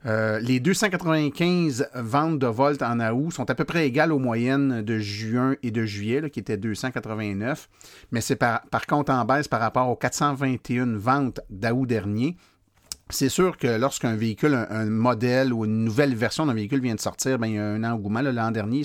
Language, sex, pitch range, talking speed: French, male, 110-140 Hz, 195 wpm